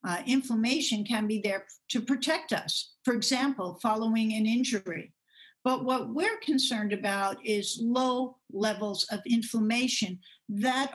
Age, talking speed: 50-69, 130 wpm